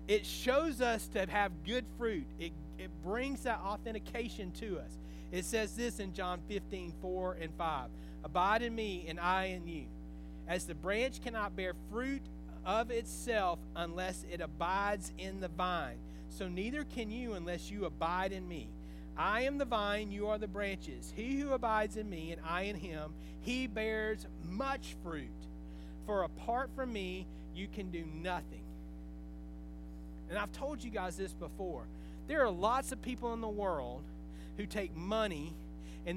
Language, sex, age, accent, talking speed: English, male, 40-59, American, 170 wpm